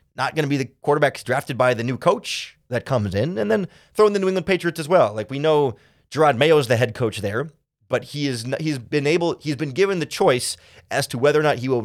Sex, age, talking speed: male, 30-49, 265 wpm